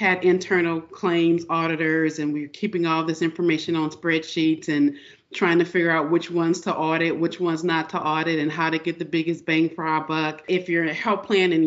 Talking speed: 215 wpm